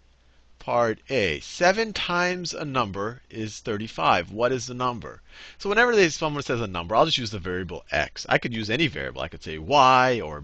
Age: 40-59